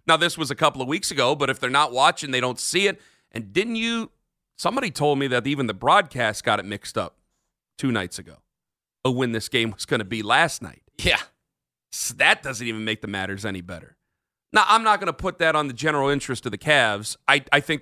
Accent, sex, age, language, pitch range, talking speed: American, male, 40-59, English, 120-180 Hz, 230 wpm